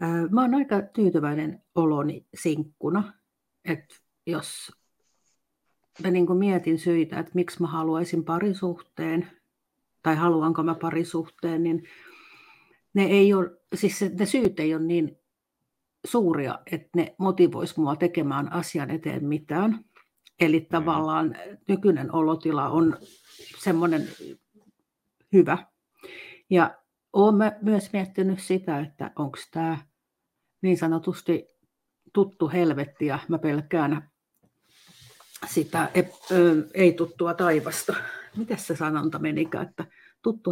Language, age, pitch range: Finnish, 50-69, 160-195 Hz